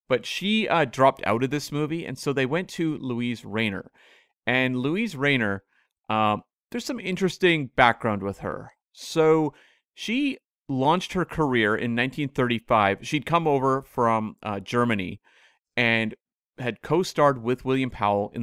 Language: English